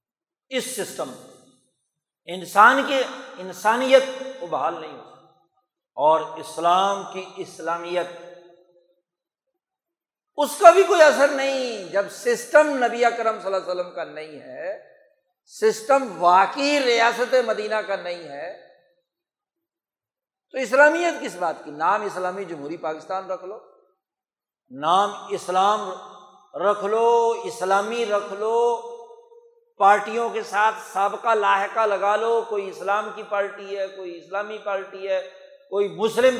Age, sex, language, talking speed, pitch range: 60-79, male, Urdu, 120 wpm, 185-250 Hz